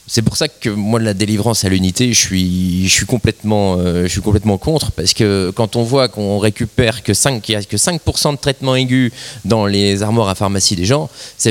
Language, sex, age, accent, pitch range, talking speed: French, male, 20-39, French, 105-145 Hz, 215 wpm